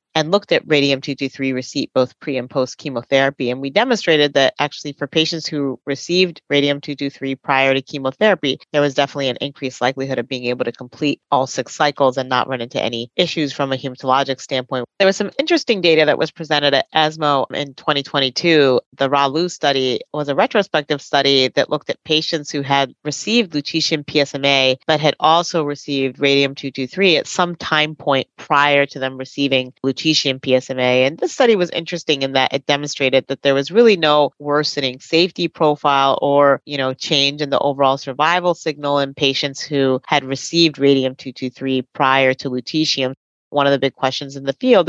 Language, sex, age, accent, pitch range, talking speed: English, female, 40-59, American, 130-150 Hz, 180 wpm